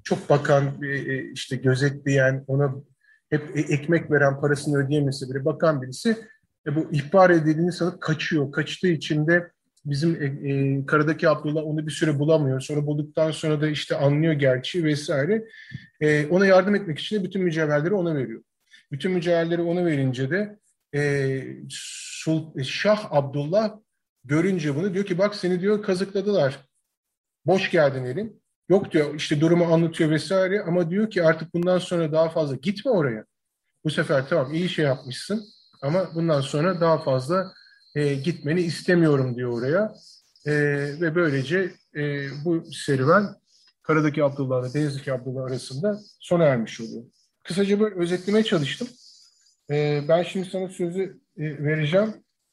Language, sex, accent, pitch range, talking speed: Turkish, male, native, 140-180 Hz, 145 wpm